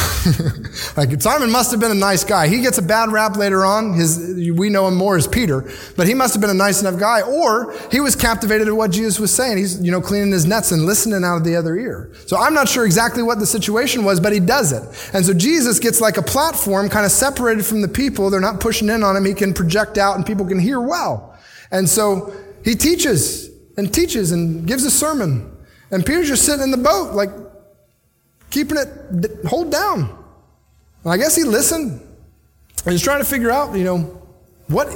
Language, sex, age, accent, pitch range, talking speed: English, male, 30-49, American, 175-230 Hz, 225 wpm